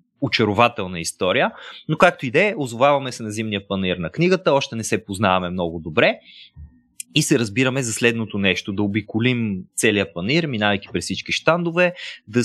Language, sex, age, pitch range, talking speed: Bulgarian, male, 30-49, 100-150 Hz, 165 wpm